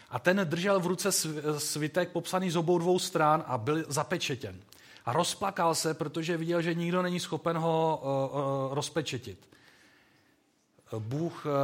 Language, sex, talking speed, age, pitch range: Czech, male, 135 wpm, 40-59, 130-160 Hz